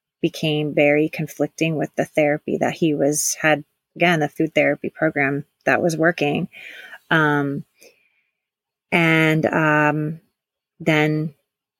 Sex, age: female, 30-49